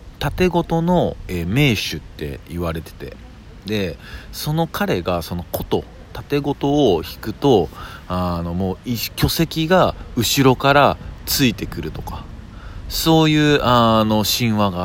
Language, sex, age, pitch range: Japanese, male, 40-59, 85-130 Hz